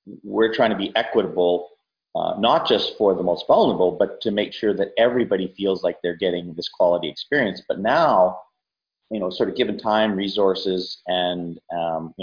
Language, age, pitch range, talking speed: English, 30-49, 90-125 Hz, 180 wpm